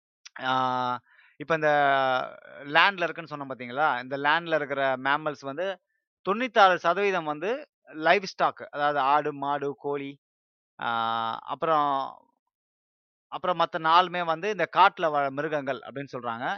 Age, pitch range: 20-39, 130-165 Hz